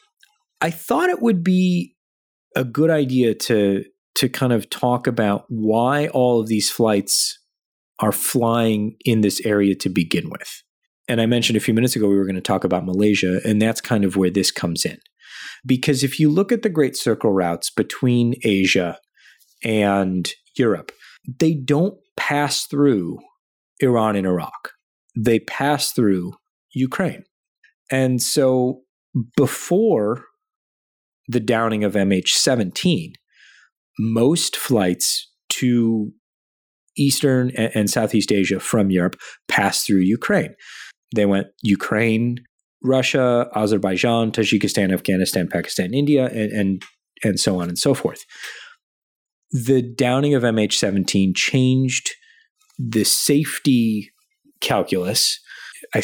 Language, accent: English, American